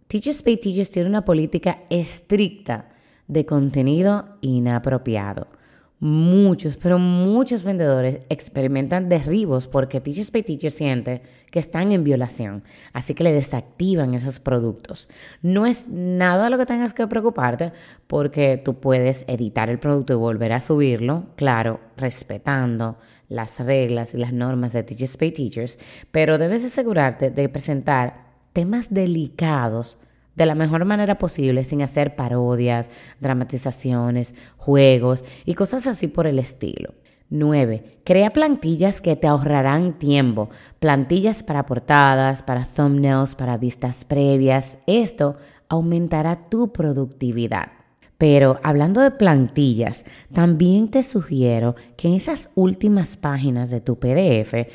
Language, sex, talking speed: Spanish, female, 130 wpm